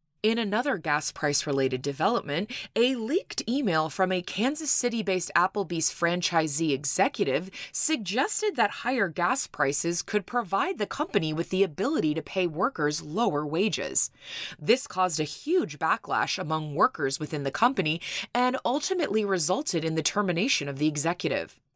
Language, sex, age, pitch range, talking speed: English, female, 20-39, 160-235 Hz, 140 wpm